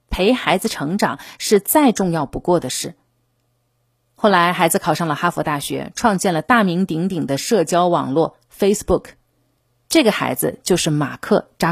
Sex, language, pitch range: female, Chinese, 145-230 Hz